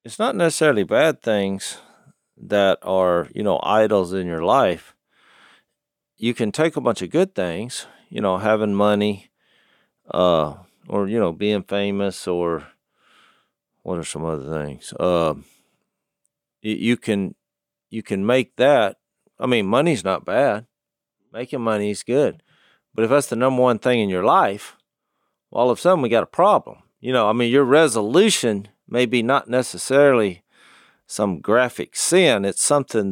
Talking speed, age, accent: 155 wpm, 40-59, American